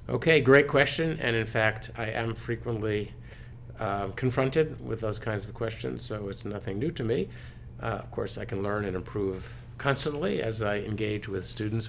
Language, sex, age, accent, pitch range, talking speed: English, male, 50-69, American, 110-125 Hz, 180 wpm